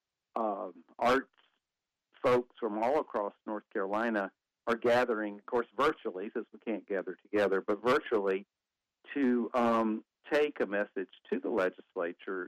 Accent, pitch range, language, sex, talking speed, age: American, 110-150 Hz, English, male, 135 wpm, 50-69